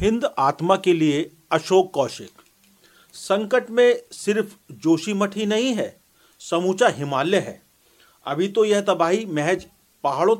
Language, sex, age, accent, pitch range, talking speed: Hindi, male, 40-59, native, 150-200 Hz, 125 wpm